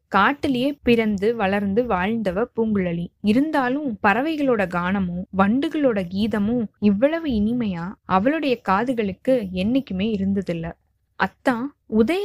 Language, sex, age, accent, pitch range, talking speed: Tamil, female, 20-39, native, 195-265 Hz, 90 wpm